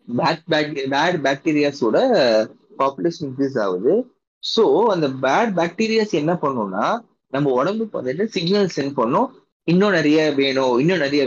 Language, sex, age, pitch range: Tamil, male, 20-39, 130-175 Hz